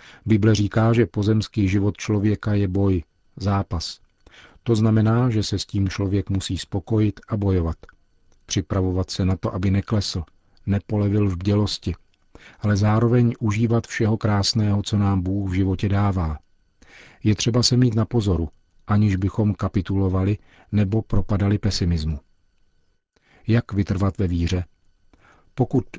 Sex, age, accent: male, 40-59, native